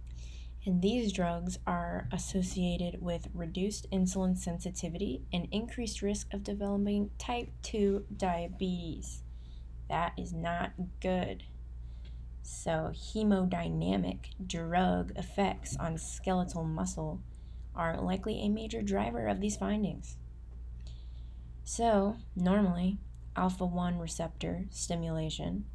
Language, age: English, 20-39